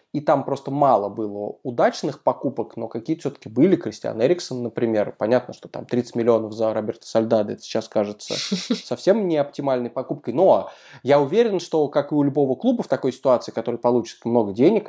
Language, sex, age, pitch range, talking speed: Russian, male, 20-39, 115-150 Hz, 175 wpm